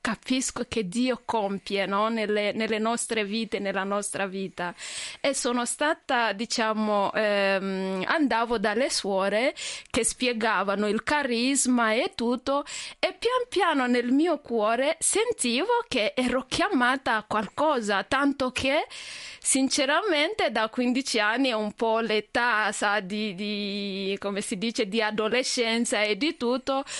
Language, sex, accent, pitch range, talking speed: Italian, female, native, 215-275 Hz, 115 wpm